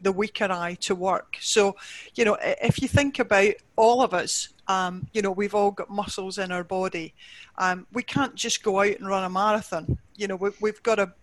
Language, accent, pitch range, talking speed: English, British, 180-205 Hz, 220 wpm